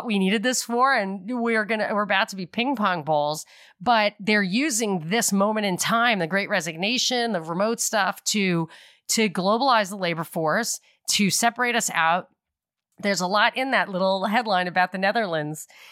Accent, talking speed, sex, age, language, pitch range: American, 175 wpm, female, 30-49, English, 175-230 Hz